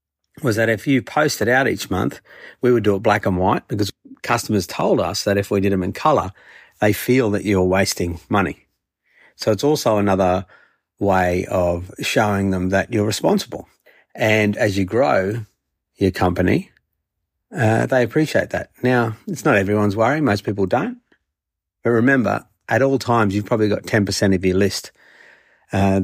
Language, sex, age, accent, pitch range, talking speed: English, male, 50-69, Australian, 95-125 Hz, 175 wpm